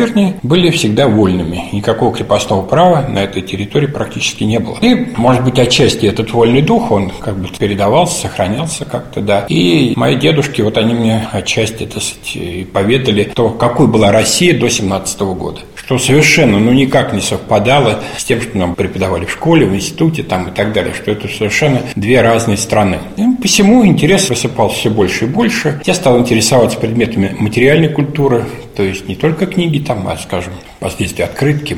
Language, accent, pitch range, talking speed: Russian, native, 100-135 Hz, 170 wpm